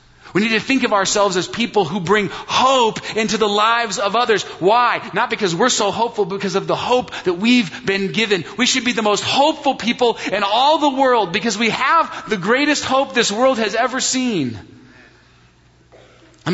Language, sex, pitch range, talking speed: English, male, 200-270 Hz, 195 wpm